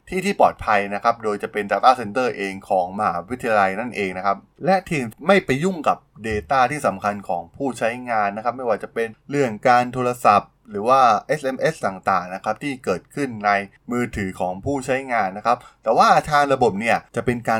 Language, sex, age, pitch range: Thai, male, 20-39, 105-140 Hz